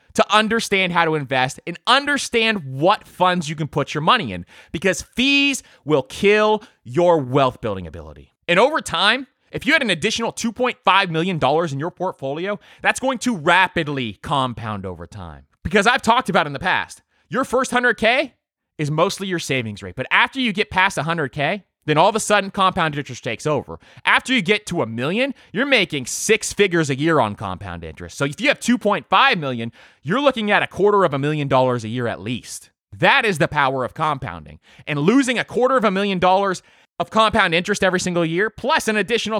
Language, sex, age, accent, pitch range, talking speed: English, male, 30-49, American, 150-230 Hz, 200 wpm